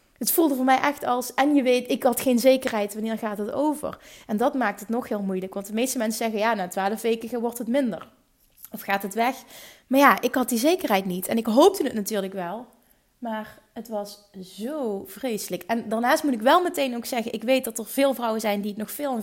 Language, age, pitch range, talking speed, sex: Dutch, 30-49, 205-245 Hz, 245 wpm, female